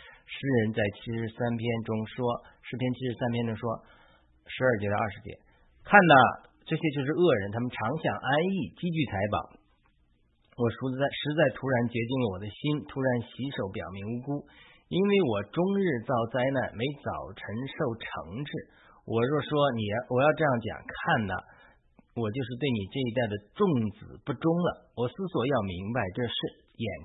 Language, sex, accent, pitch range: Chinese, male, native, 110-145 Hz